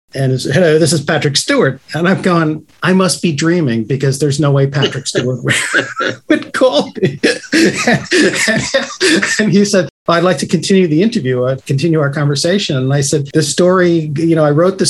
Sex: male